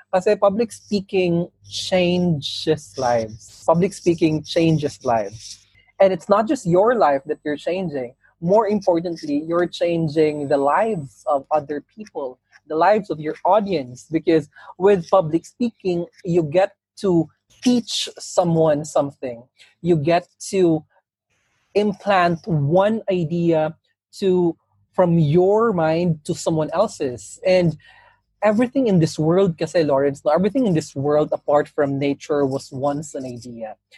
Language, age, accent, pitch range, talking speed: Filipino, 20-39, native, 140-185 Hz, 130 wpm